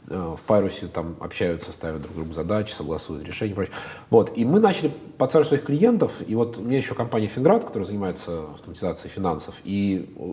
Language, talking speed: Russian, 185 wpm